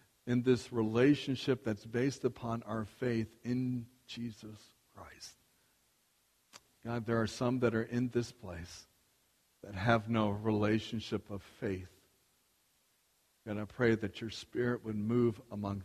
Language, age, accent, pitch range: English, 60-79, American, 105-125 Hz